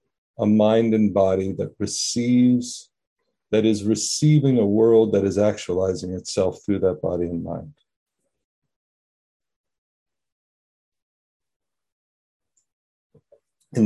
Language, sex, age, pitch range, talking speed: English, male, 40-59, 100-125 Hz, 90 wpm